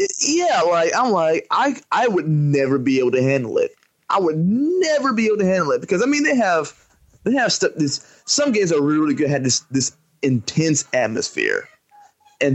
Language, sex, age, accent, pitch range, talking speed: English, male, 20-39, American, 140-220 Hz, 195 wpm